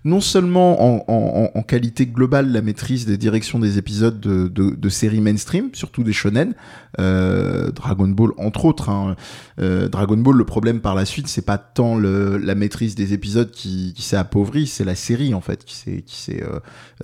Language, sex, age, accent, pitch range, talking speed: French, male, 20-39, French, 105-135 Hz, 200 wpm